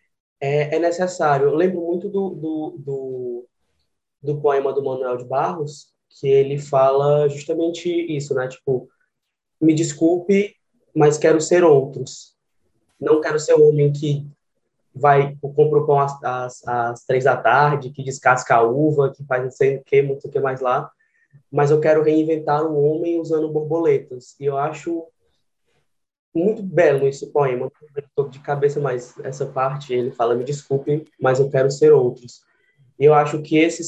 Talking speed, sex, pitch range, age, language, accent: 170 wpm, male, 140-165 Hz, 20-39, Portuguese, Brazilian